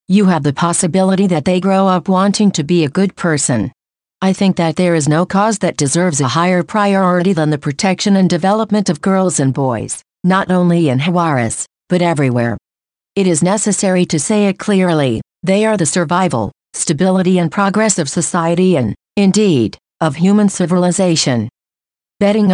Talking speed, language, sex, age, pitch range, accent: 170 wpm, English, female, 50-69, 155-190 Hz, American